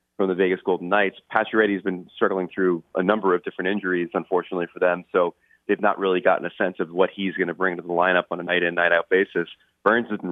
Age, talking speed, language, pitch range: 30-49, 235 wpm, English, 90-105 Hz